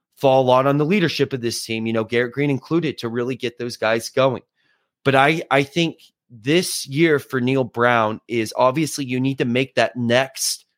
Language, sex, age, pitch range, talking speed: English, male, 30-49, 125-165 Hz, 200 wpm